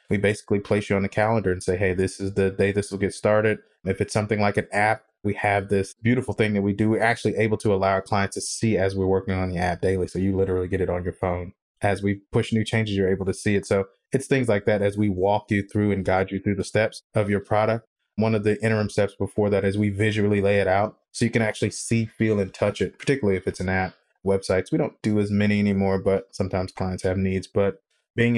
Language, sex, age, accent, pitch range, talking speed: English, male, 20-39, American, 95-110 Hz, 265 wpm